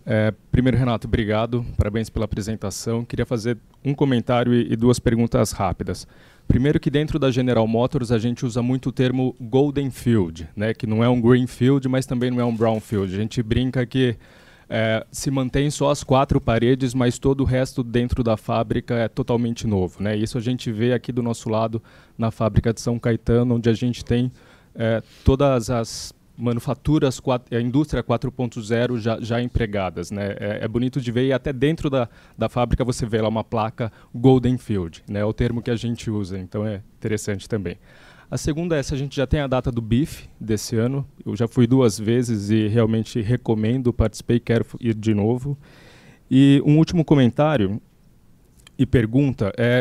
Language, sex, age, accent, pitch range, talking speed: Portuguese, male, 20-39, Brazilian, 110-130 Hz, 190 wpm